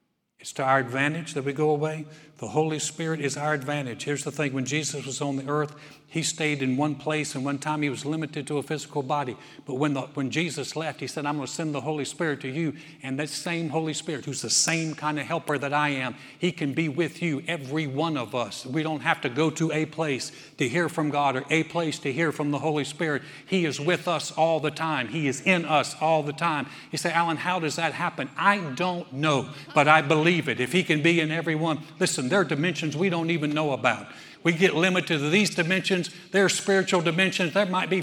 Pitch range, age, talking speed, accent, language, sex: 145-175 Hz, 60-79, 245 wpm, American, English, male